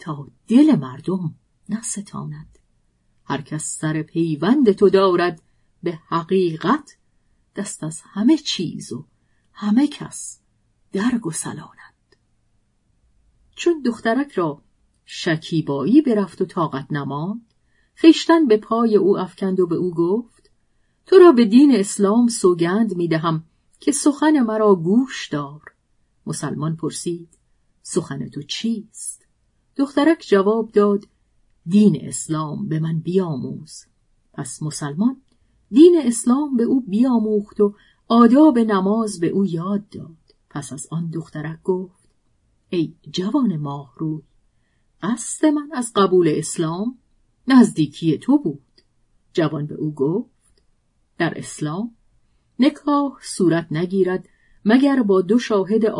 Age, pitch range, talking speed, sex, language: 40-59, 160-235 Hz, 115 wpm, female, Persian